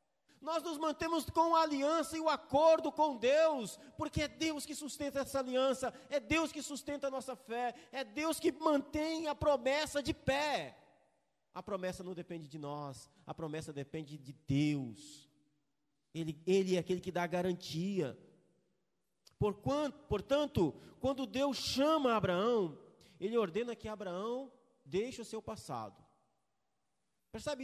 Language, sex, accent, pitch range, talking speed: Portuguese, male, Brazilian, 200-305 Hz, 145 wpm